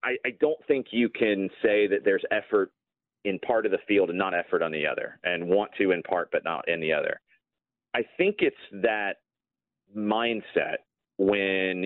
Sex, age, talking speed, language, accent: male, 30-49, 180 wpm, English, American